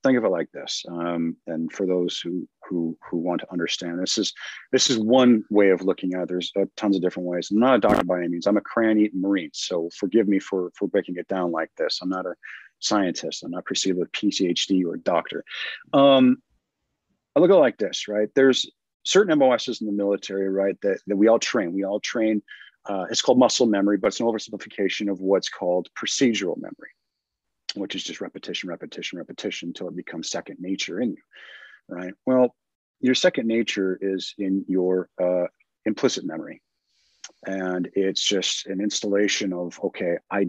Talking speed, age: 195 wpm, 40-59